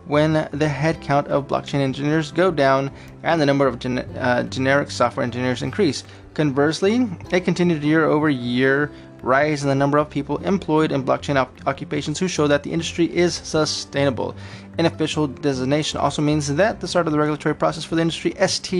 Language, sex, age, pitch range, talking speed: English, male, 20-39, 135-170 Hz, 170 wpm